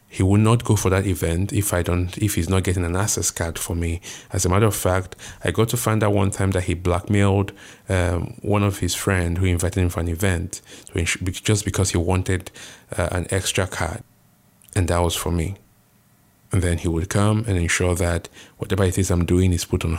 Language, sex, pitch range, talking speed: English, male, 85-100 Hz, 230 wpm